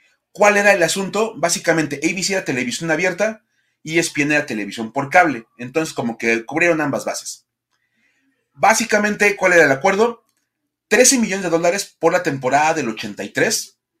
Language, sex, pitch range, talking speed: Spanish, male, 130-180 Hz, 150 wpm